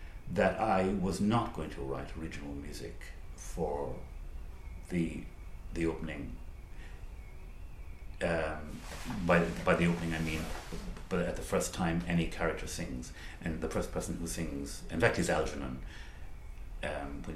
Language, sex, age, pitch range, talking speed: English, male, 60-79, 70-90 Hz, 140 wpm